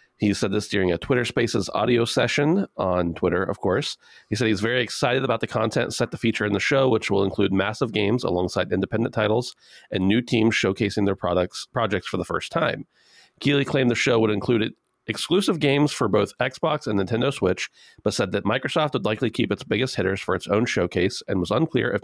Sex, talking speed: male, 210 wpm